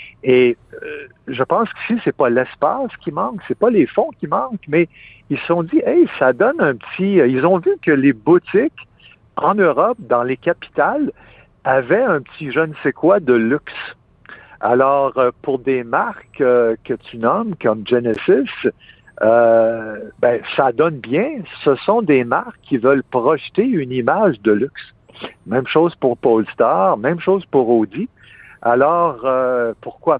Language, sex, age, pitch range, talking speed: French, male, 60-79, 125-175 Hz, 170 wpm